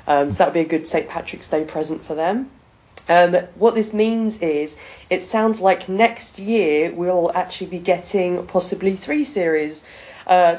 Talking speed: 175 wpm